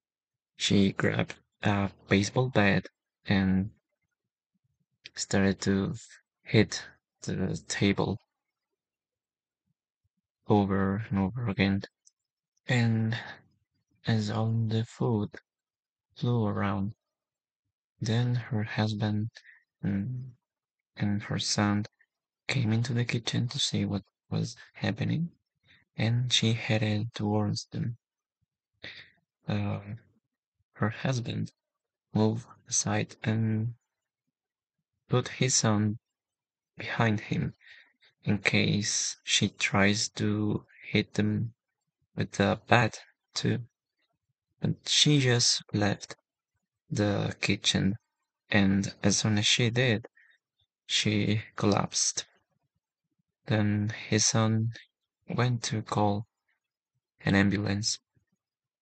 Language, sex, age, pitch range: English, male, 20-39, 100-115 Hz